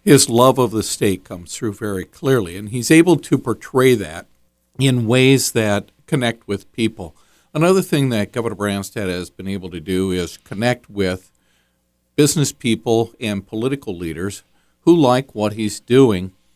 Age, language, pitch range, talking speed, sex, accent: 50-69, English, 85-110 Hz, 160 wpm, male, American